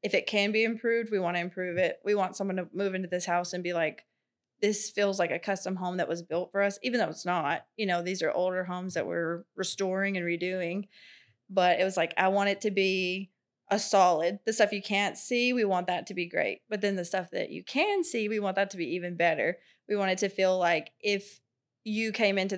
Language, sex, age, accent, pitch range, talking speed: English, female, 20-39, American, 180-210 Hz, 250 wpm